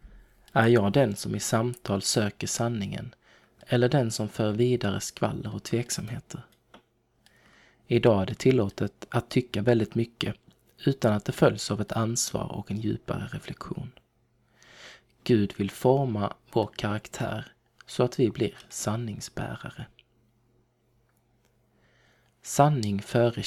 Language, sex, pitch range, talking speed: Swedish, male, 105-125 Hz, 120 wpm